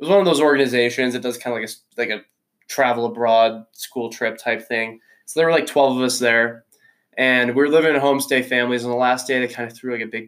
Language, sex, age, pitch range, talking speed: English, male, 20-39, 115-140 Hz, 275 wpm